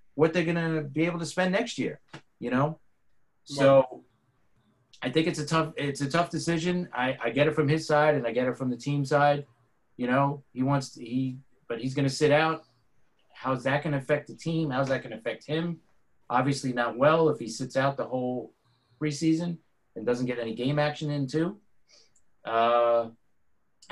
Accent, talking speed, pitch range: American, 200 wpm, 125-150 Hz